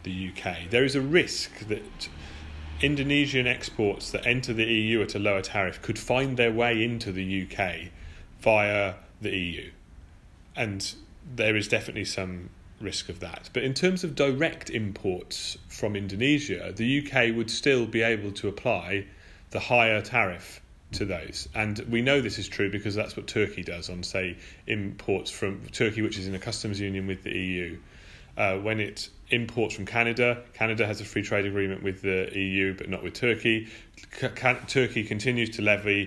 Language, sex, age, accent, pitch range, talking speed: English, male, 30-49, British, 95-115 Hz, 175 wpm